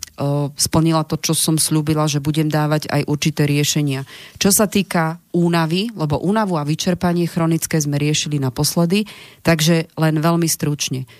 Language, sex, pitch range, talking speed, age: Slovak, female, 145-175 Hz, 145 wpm, 30-49